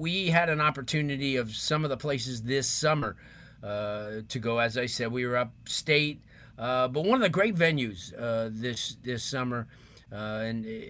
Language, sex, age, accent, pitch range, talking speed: English, male, 40-59, American, 120-145 Hz, 180 wpm